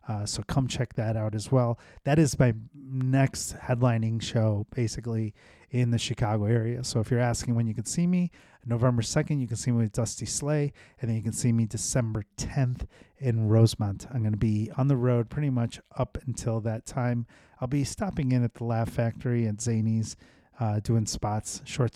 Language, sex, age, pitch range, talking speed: English, male, 30-49, 110-130 Hz, 200 wpm